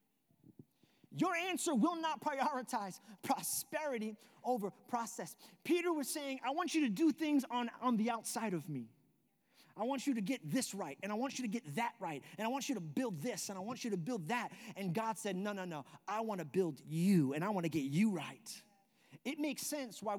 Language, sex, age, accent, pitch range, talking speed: English, male, 30-49, American, 155-240 Hz, 220 wpm